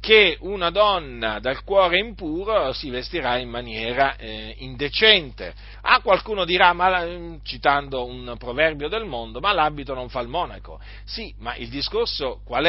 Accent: native